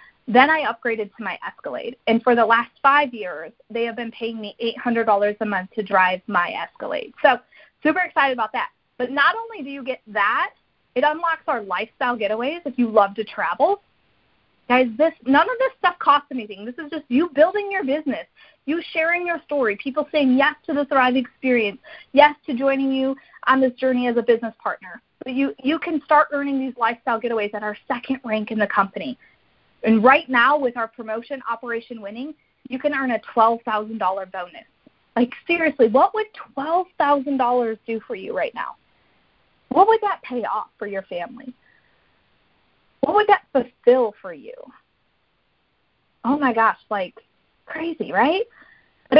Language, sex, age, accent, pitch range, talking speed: English, female, 30-49, American, 225-290 Hz, 175 wpm